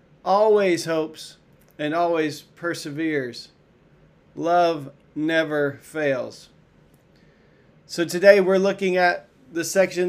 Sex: male